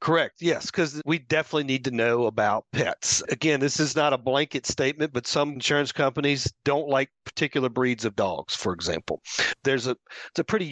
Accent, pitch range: American, 125-155 Hz